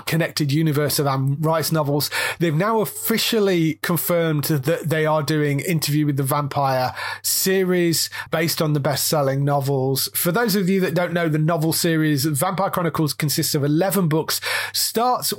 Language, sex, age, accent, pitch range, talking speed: English, male, 30-49, British, 145-175 Hz, 160 wpm